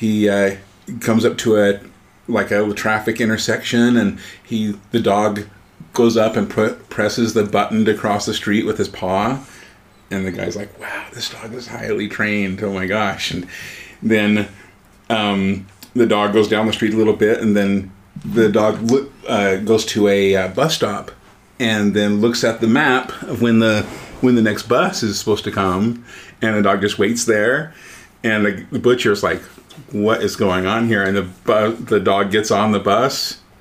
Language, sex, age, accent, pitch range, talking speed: English, male, 30-49, American, 95-110 Hz, 190 wpm